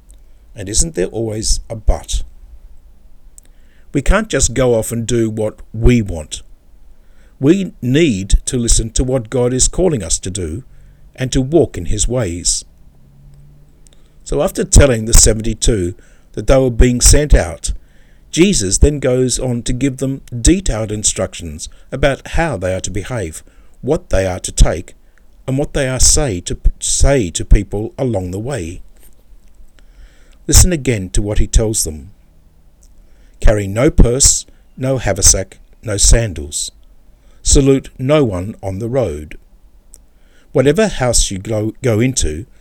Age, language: 50-69, English